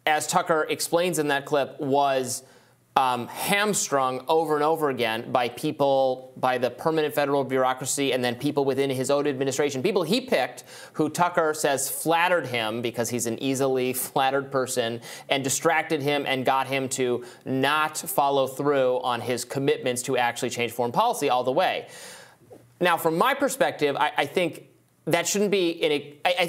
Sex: male